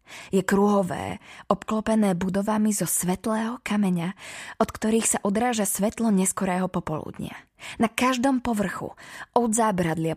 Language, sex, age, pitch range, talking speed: Slovak, female, 20-39, 170-210 Hz, 110 wpm